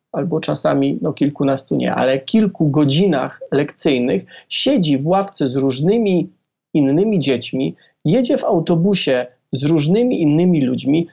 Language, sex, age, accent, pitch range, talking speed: Polish, male, 40-59, native, 155-205 Hz, 125 wpm